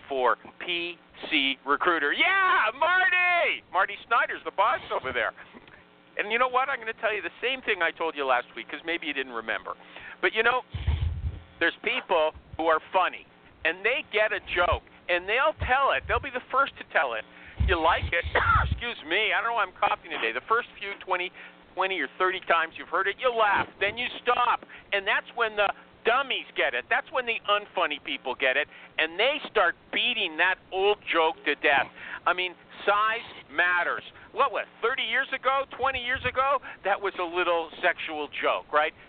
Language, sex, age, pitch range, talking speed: English, male, 50-69, 175-275 Hz, 195 wpm